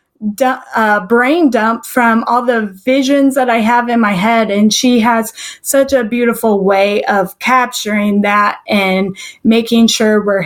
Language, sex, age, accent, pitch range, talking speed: English, female, 20-39, American, 210-265 Hz, 155 wpm